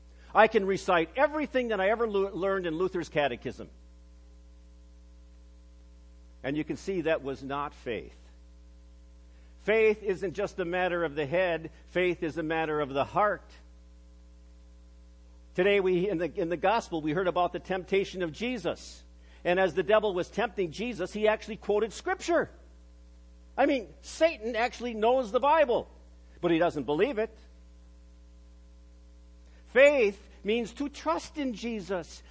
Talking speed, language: 145 wpm, English